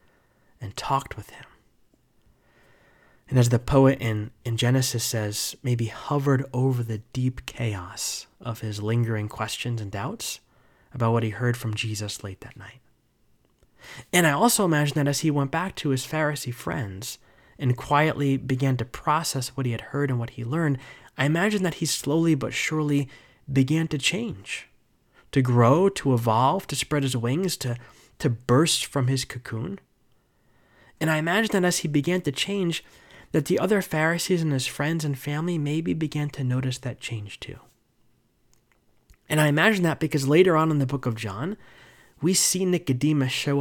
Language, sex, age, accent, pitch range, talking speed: English, male, 20-39, American, 120-155 Hz, 170 wpm